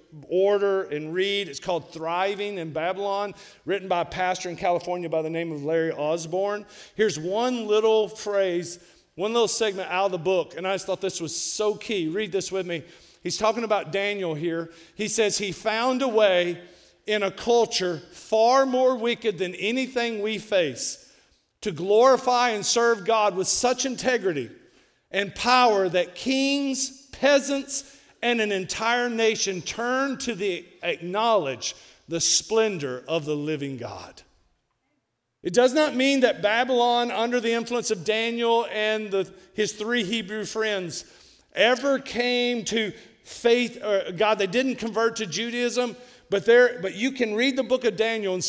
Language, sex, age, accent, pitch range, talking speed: English, male, 50-69, American, 175-235 Hz, 160 wpm